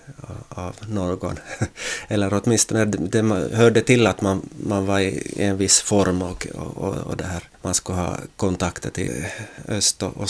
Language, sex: Swedish, male